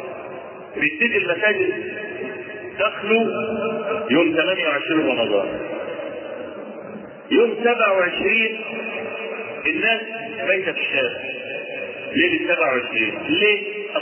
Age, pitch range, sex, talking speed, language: 50-69, 190-285 Hz, male, 65 wpm, Arabic